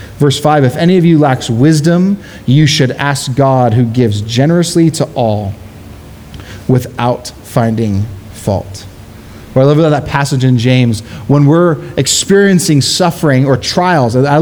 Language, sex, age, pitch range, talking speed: English, male, 30-49, 110-150 Hz, 135 wpm